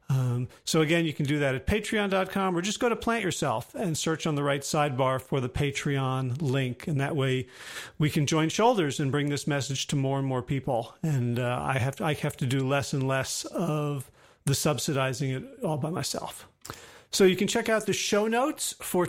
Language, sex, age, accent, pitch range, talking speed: English, male, 40-59, American, 145-185 Hz, 210 wpm